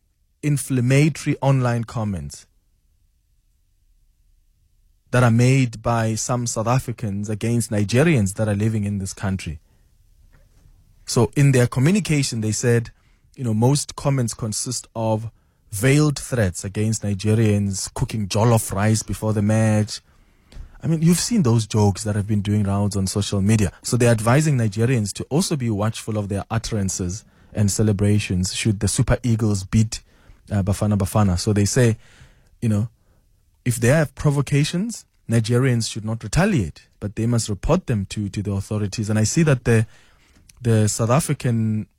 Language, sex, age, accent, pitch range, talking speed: English, male, 20-39, South African, 100-125 Hz, 150 wpm